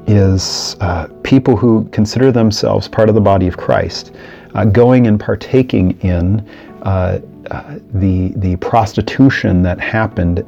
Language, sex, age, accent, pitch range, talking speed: English, male, 40-59, American, 90-105 Hz, 135 wpm